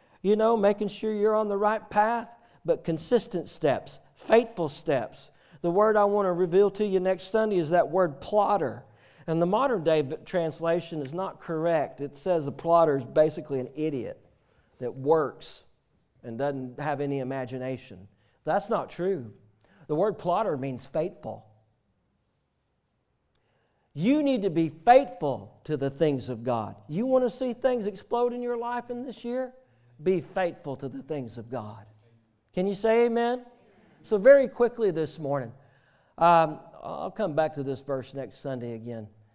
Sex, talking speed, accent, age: male, 165 wpm, American, 50-69